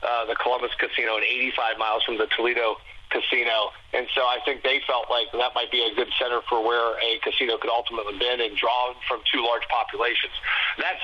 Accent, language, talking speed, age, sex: American, English, 205 wpm, 40-59, male